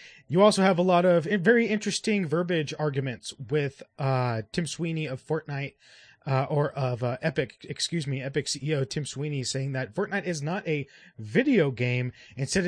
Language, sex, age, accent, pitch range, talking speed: English, male, 20-39, American, 125-155 Hz, 170 wpm